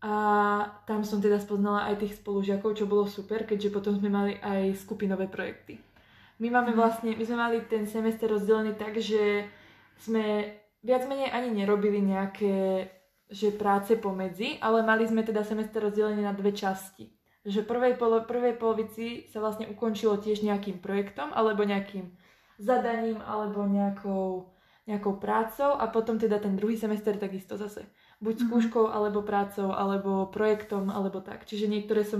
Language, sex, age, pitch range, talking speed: Slovak, female, 20-39, 200-225 Hz, 155 wpm